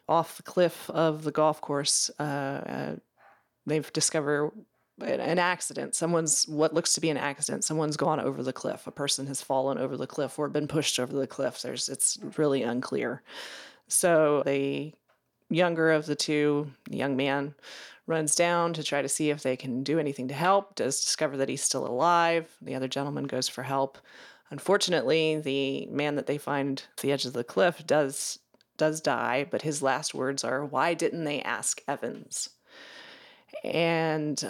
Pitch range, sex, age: 140-165 Hz, female, 30-49